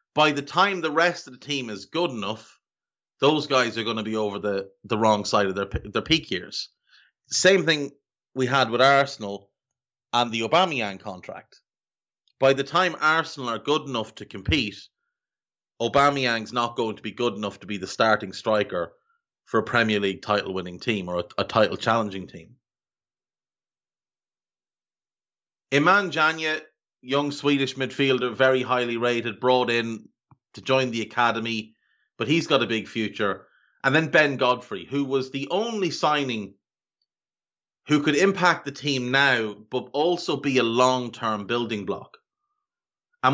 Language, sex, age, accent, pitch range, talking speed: English, male, 30-49, Irish, 110-150 Hz, 155 wpm